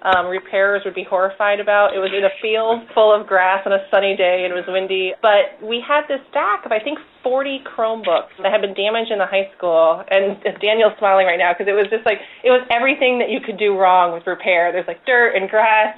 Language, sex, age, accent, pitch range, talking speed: English, female, 30-49, American, 190-225 Hz, 245 wpm